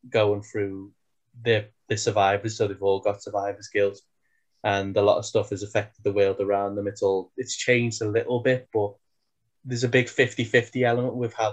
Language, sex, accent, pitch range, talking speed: English, male, British, 100-120 Hz, 195 wpm